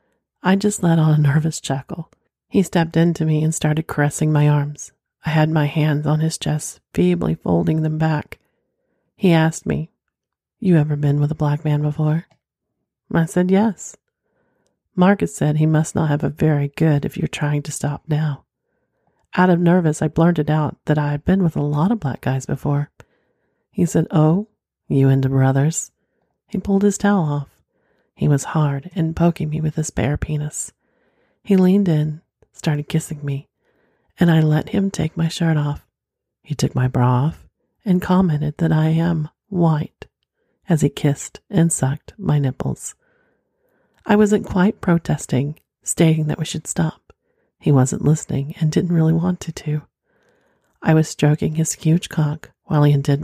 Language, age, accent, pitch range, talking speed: English, 40-59, American, 145-170 Hz, 170 wpm